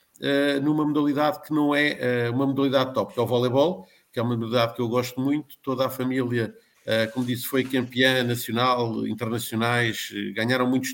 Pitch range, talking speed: 125-140 Hz, 170 wpm